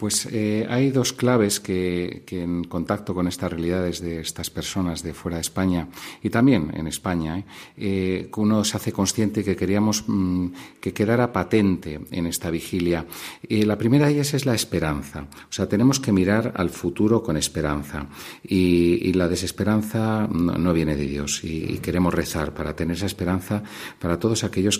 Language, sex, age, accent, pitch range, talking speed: Spanish, male, 40-59, Spanish, 80-95 Hz, 175 wpm